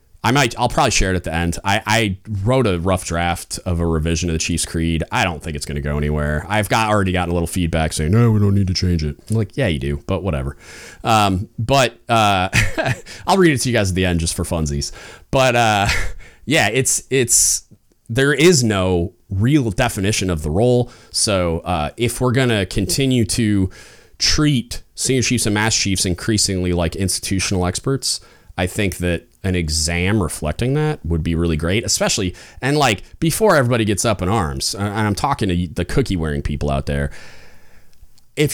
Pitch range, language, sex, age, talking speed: 85-120 Hz, English, male, 30-49, 200 wpm